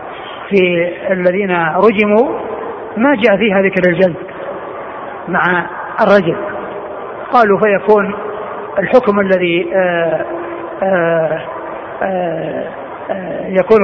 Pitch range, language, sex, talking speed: 180-210 Hz, Arabic, male, 65 wpm